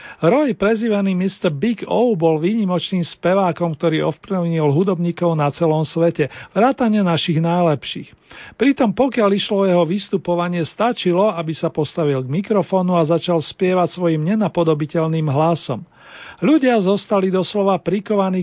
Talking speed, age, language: 125 wpm, 40-59, Slovak